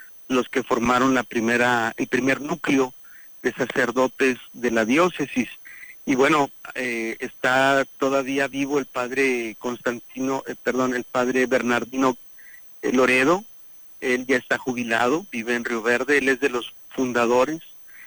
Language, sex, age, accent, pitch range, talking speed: Spanish, male, 50-69, Mexican, 120-140 Hz, 135 wpm